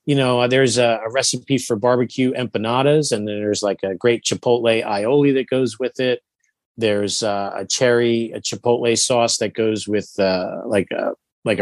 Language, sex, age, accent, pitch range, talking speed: English, male, 40-59, American, 115-135 Hz, 180 wpm